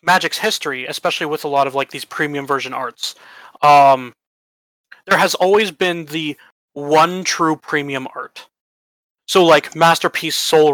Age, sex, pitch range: 30-49, male, 135-170 Hz